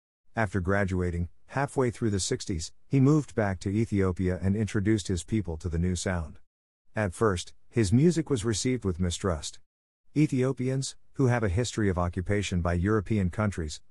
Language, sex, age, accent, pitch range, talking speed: English, male, 50-69, American, 90-115 Hz, 160 wpm